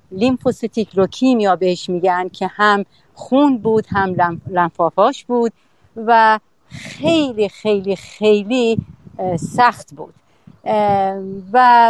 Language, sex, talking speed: Persian, female, 95 wpm